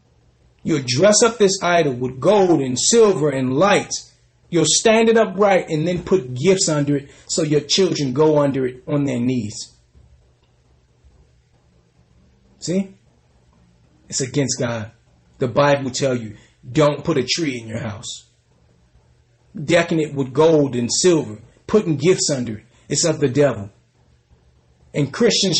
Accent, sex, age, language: American, male, 30-49, English